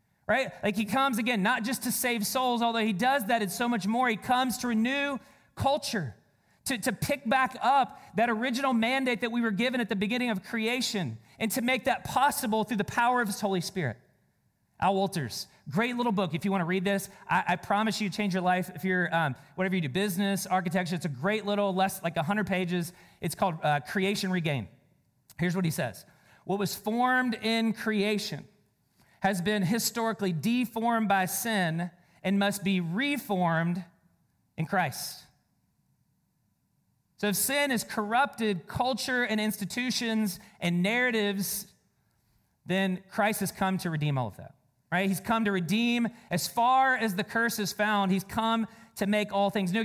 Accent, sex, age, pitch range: American, male, 40-59, 180-230 Hz